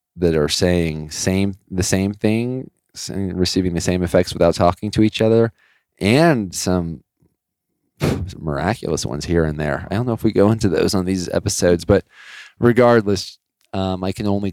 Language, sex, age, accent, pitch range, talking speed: English, male, 20-39, American, 80-95 Hz, 170 wpm